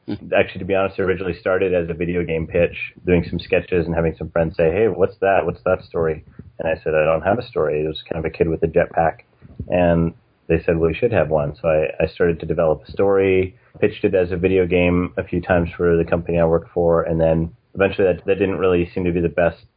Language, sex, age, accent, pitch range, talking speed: English, male, 30-49, American, 85-95 Hz, 260 wpm